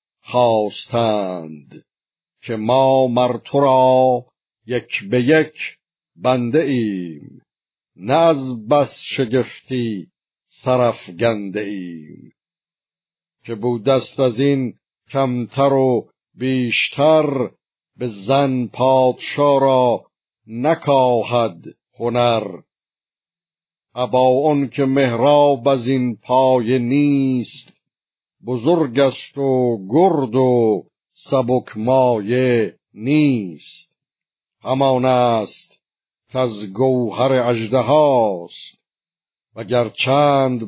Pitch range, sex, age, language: 115-135 Hz, male, 50-69, Persian